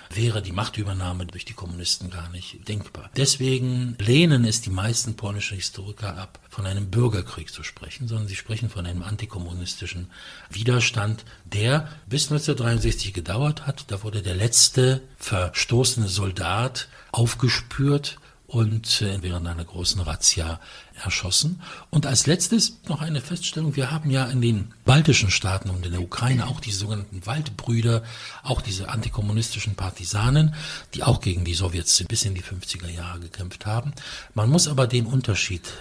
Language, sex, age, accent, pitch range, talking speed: English, male, 60-79, German, 95-125 Hz, 150 wpm